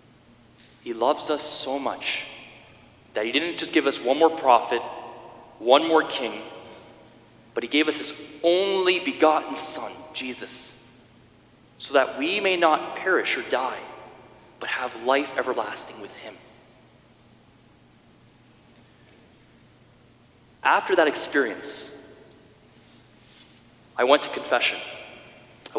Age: 30-49